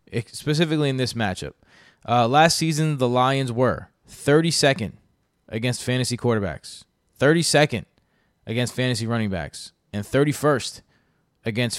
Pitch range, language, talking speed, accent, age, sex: 115-145 Hz, English, 110 wpm, American, 20-39, male